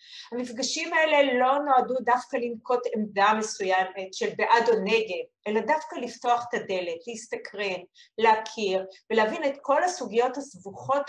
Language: Hebrew